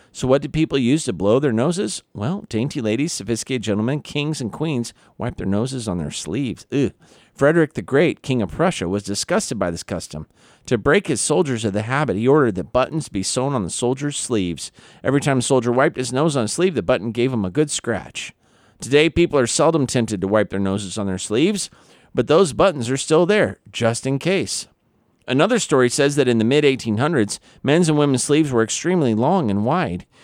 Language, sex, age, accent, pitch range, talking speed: English, male, 50-69, American, 105-135 Hz, 210 wpm